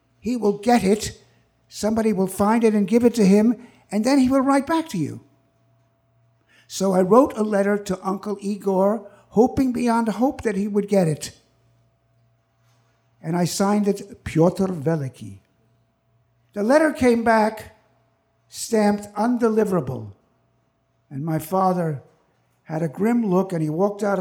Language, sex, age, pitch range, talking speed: English, male, 60-79, 135-220 Hz, 150 wpm